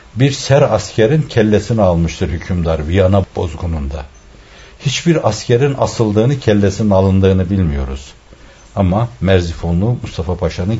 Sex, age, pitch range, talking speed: male, 60-79, 85-130 Hz, 100 wpm